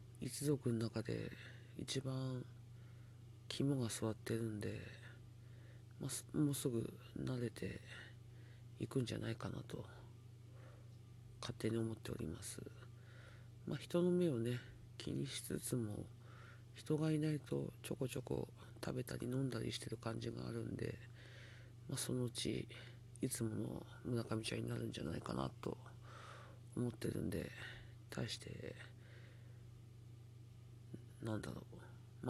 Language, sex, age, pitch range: Japanese, male, 40-59, 115-120 Hz